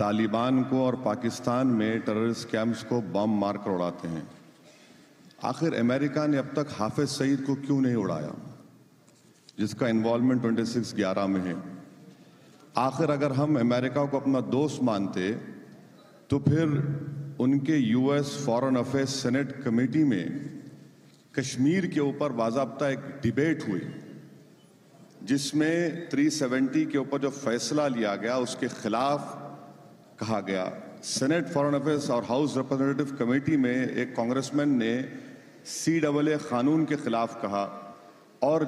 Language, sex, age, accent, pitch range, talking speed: Hindi, male, 40-59, native, 120-150 Hz, 130 wpm